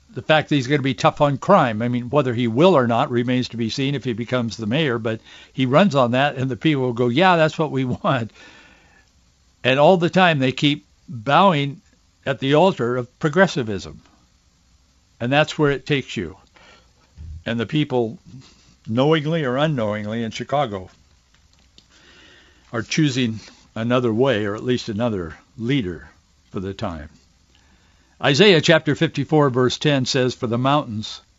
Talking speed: 170 wpm